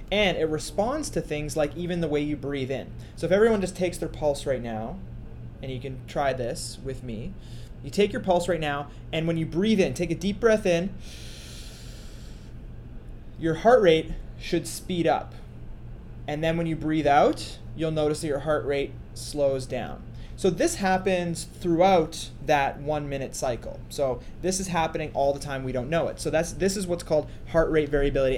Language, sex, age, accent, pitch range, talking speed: English, male, 20-39, American, 135-175 Hz, 195 wpm